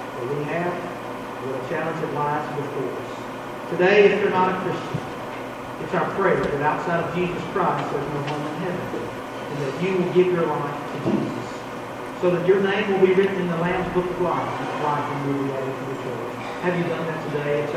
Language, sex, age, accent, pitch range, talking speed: English, male, 40-59, American, 145-195 Hz, 215 wpm